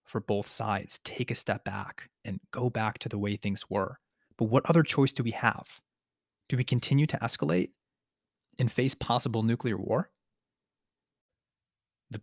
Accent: American